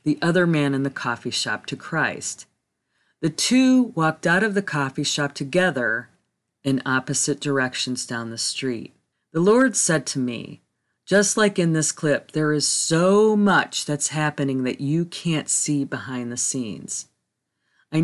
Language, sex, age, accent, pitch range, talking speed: English, female, 40-59, American, 135-180 Hz, 160 wpm